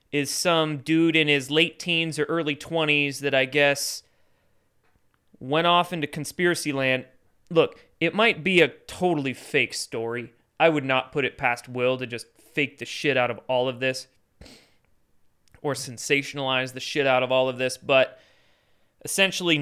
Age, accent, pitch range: 30-49, American, 130-175 Hz